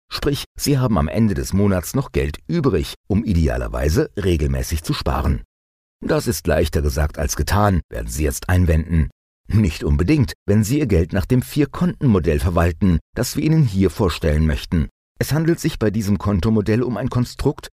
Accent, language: German, German